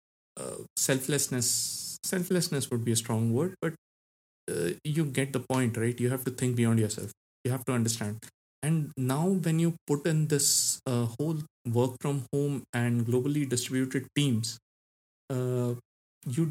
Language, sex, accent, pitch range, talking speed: Hindi, male, native, 120-140 Hz, 155 wpm